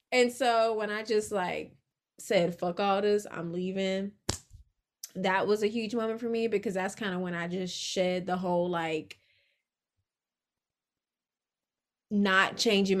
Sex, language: female, English